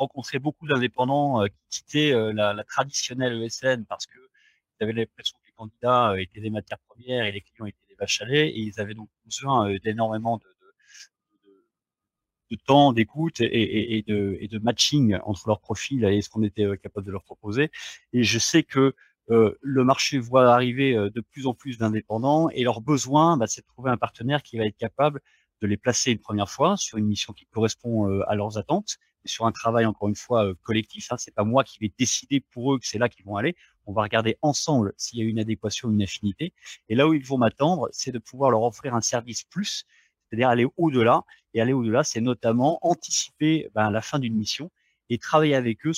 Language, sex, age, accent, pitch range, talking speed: French, male, 30-49, French, 110-140 Hz, 210 wpm